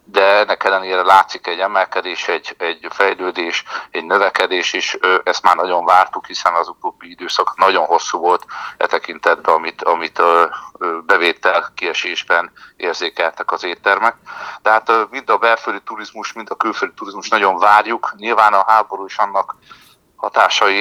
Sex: male